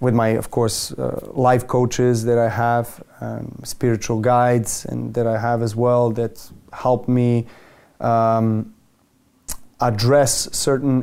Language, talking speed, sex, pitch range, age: English, 135 wpm, male, 120-130 Hz, 30-49